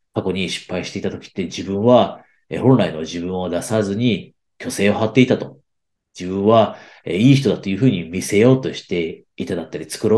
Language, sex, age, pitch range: Japanese, male, 40-59, 95-125 Hz